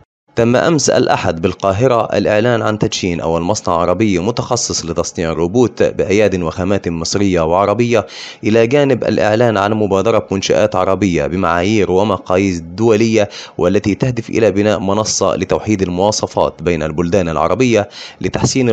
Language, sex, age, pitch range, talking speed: Arabic, male, 30-49, 90-110 Hz, 120 wpm